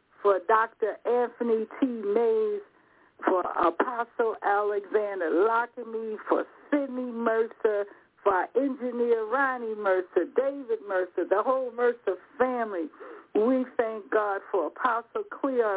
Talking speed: 110 wpm